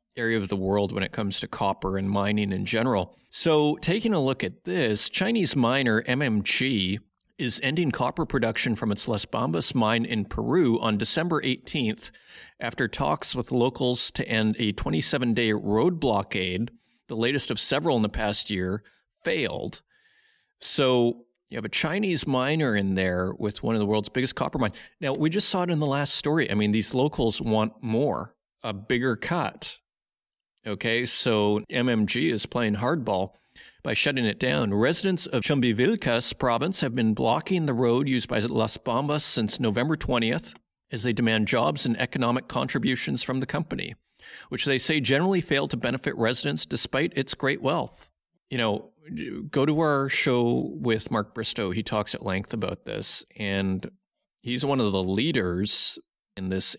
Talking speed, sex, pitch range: 170 wpm, male, 105-140 Hz